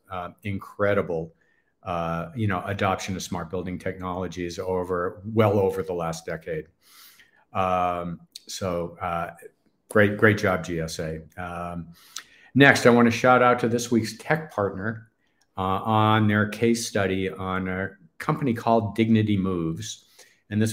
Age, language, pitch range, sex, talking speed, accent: 50-69, English, 95-110 Hz, male, 140 wpm, American